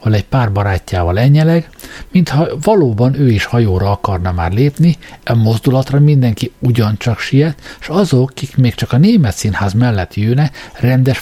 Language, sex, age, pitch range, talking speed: Hungarian, male, 60-79, 110-150 Hz, 155 wpm